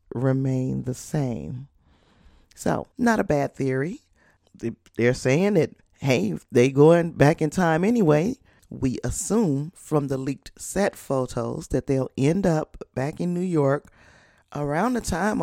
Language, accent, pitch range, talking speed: English, American, 130-170 Hz, 140 wpm